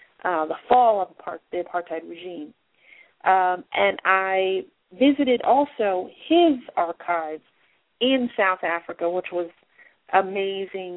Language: English